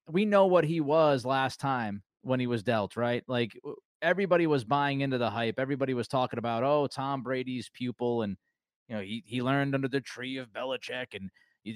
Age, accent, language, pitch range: 30-49, American, English, 125-160 Hz